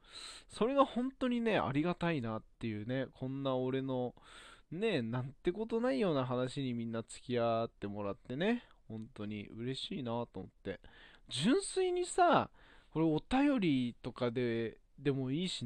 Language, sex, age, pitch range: Japanese, male, 20-39, 115-190 Hz